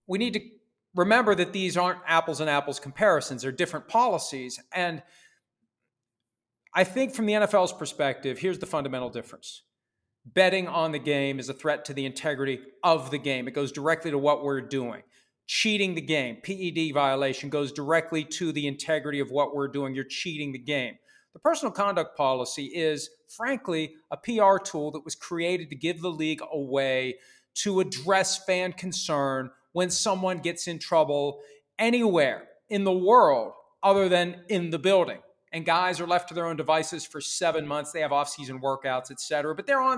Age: 40-59